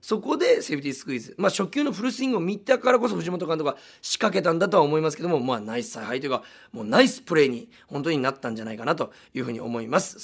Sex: male